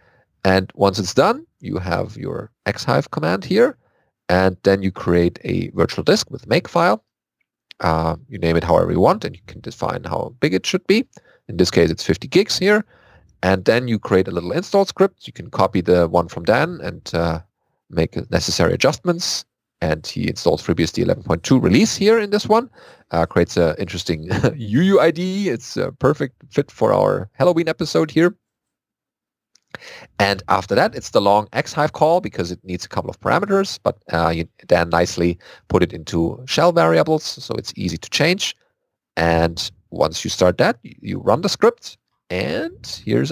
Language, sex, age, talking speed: English, male, 40-59, 175 wpm